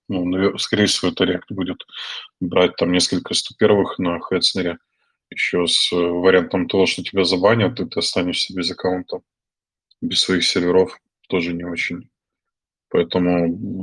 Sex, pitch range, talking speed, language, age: male, 90-105 Hz, 135 wpm, Russian, 20-39